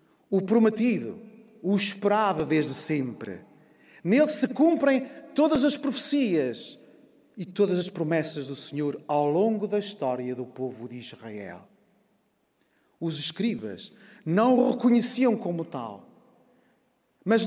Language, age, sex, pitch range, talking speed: Portuguese, 40-59, male, 175-255 Hz, 115 wpm